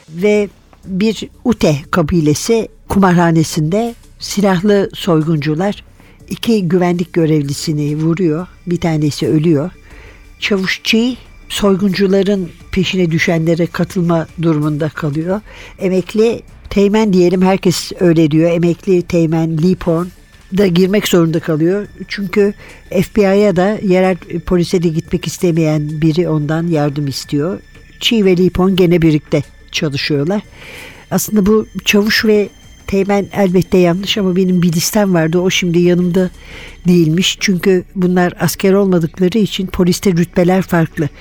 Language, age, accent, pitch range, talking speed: Turkish, 60-79, native, 160-195 Hz, 110 wpm